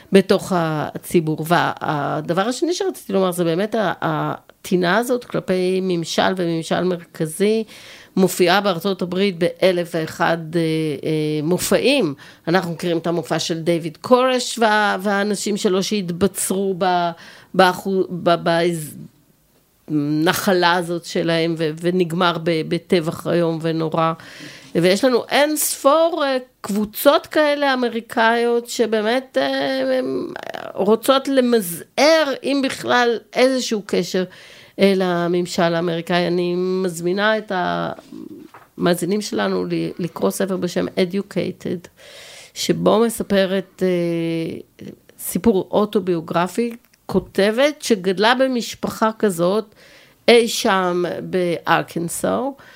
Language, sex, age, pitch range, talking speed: Hebrew, female, 50-69, 175-220 Hz, 85 wpm